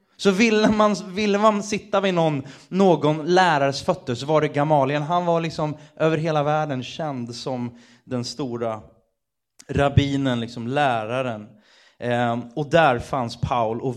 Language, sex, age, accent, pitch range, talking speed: Swedish, male, 30-49, native, 120-165 Hz, 140 wpm